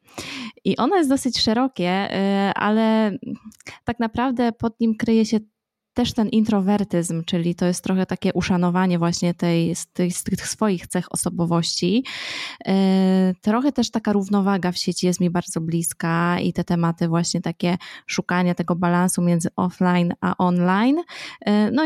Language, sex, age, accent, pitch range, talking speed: Polish, female, 20-39, native, 175-225 Hz, 145 wpm